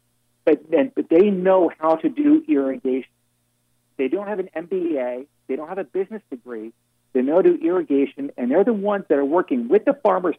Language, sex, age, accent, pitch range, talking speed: English, male, 50-69, American, 125-200 Hz, 200 wpm